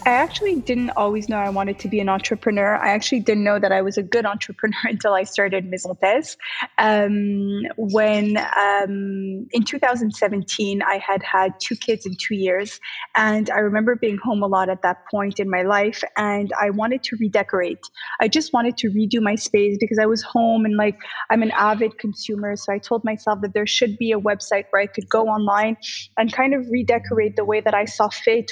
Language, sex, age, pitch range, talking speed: English, female, 20-39, 205-230 Hz, 205 wpm